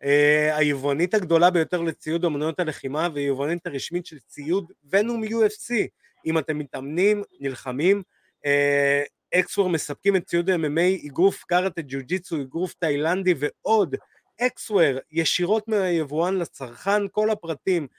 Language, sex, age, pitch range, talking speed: Hebrew, male, 30-49, 140-195 Hz, 125 wpm